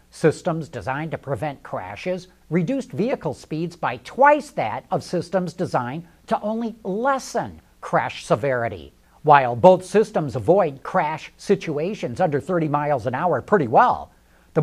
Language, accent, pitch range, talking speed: English, American, 135-190 Hz, 135 wpm